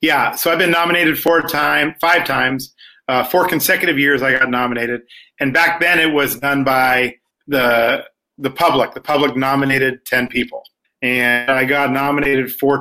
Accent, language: American, English